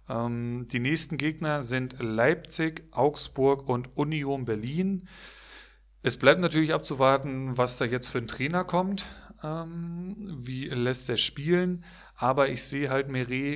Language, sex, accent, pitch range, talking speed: German, male, German, 120-145 Hz, 130 wpm